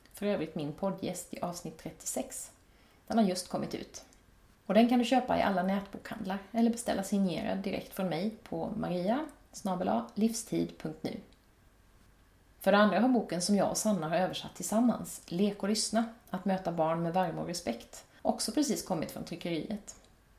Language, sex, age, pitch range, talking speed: Swedish, female, 30-49, 160-215 Hz, 160 wpm